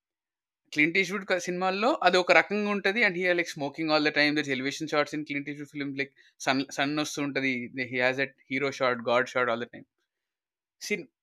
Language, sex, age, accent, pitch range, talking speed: Telugu, male, 20-39, native, 125-165 Hz, 190 wpm